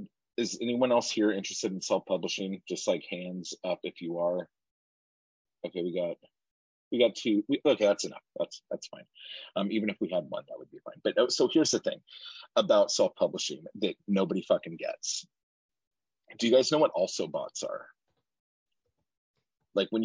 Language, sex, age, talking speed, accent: English, male, 30-49, 175 wpm, American